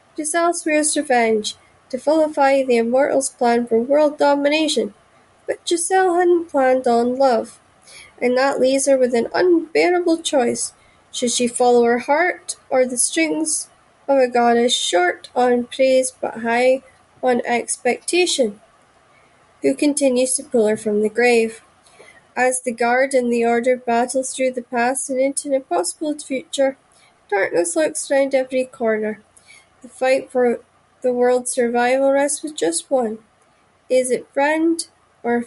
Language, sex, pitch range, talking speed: English, female, 235-275 Hz, 140 wpm